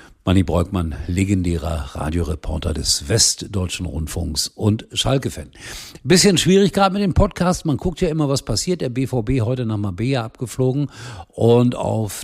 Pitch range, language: 90-125 Hz, German